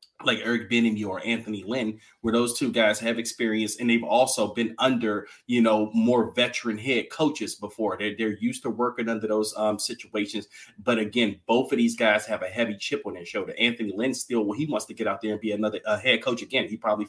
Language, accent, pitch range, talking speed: English, American, 105-125 Hz, 230 wpm